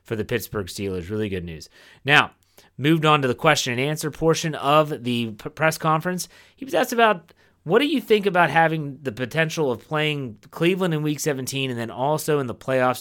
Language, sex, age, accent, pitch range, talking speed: English, male, 30-49, American, 115-155 Hz, 210 wpm